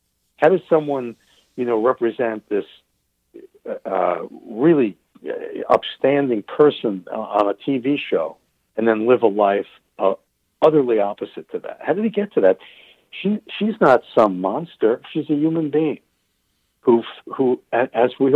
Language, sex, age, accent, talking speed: English, male, 60-79, American, 145 wpm